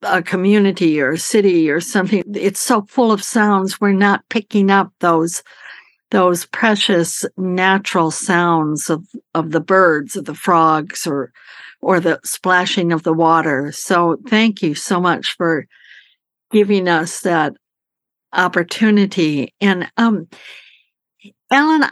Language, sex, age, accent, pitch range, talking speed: English, female, 60-79, American, 175-210 Hz, 130 wpm